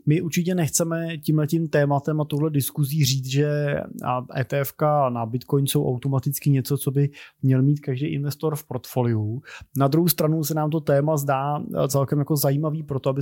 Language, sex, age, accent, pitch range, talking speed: Czech, male, 20-39, native, 135-150 Hz, 170 wpm